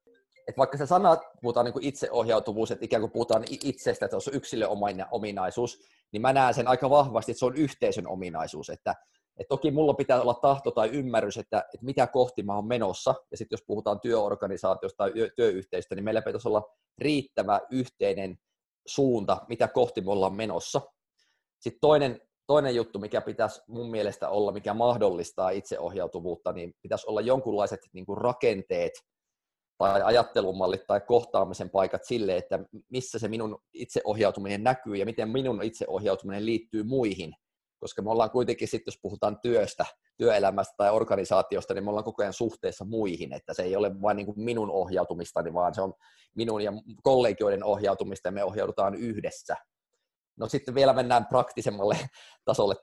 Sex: male